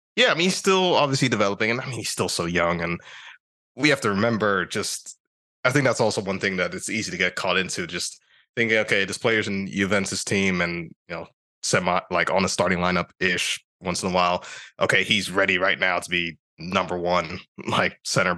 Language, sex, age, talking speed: English, male, 20-39, 215 wpm